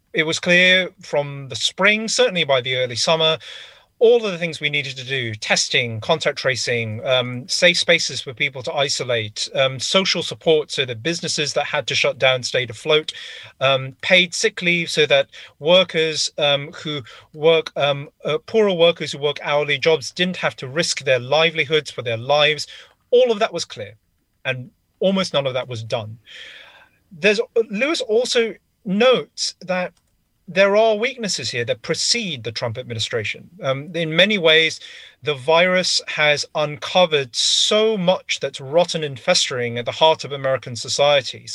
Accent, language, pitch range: British, English, 135-175 Hz